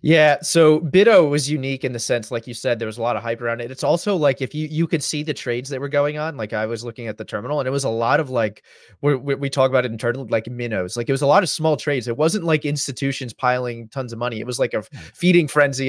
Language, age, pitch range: English, 30-49, 130-170 Hz